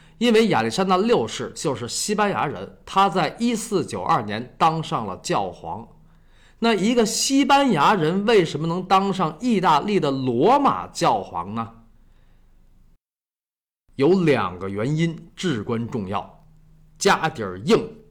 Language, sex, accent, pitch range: Chinese, male, native, 145-215 Hz